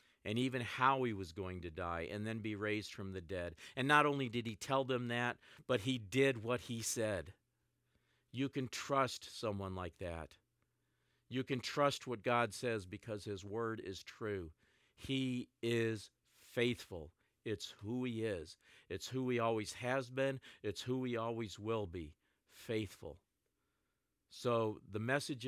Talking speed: 160 wpm